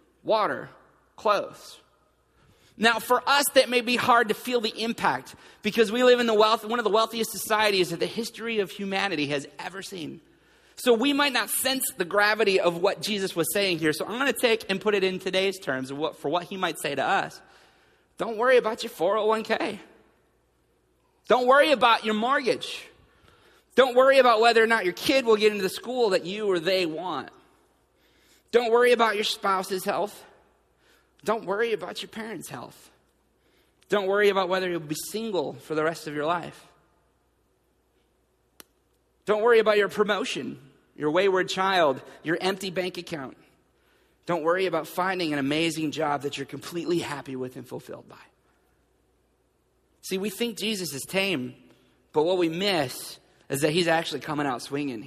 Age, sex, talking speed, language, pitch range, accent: 30-49, male, 175 wpm, English, 170-230 Hz, American